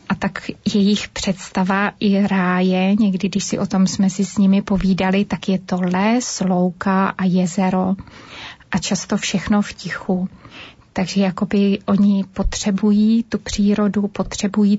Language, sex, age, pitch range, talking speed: Slovak, female, 30-49, 190-200 Hz, 140 wpm